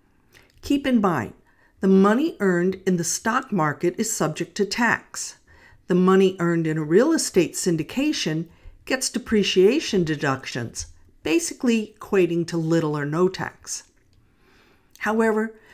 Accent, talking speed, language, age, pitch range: American, 125 wpm, English, 50-69, 165-215 Hz